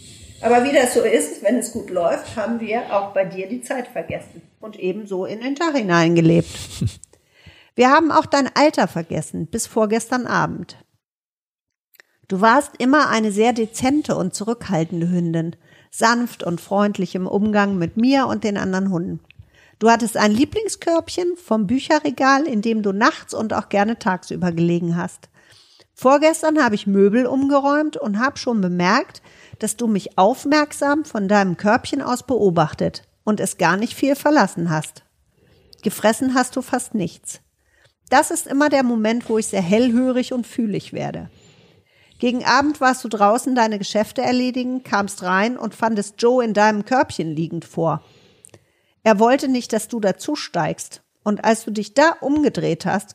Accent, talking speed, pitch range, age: German, 160 wpm, 190-255 Hz, 50-69